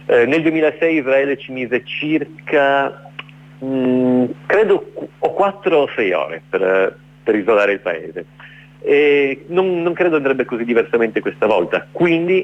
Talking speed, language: 140 wpm, Italian